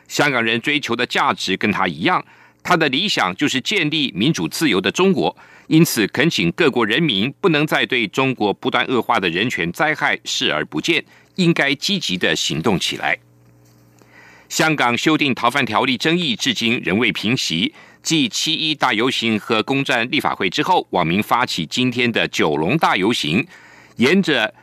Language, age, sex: German, 50-69, male